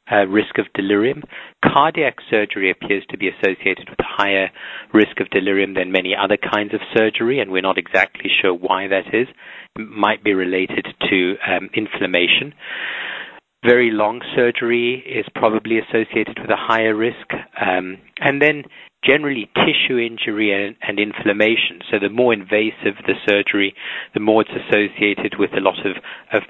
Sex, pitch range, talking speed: male, 100-120 Hz, 160 wpm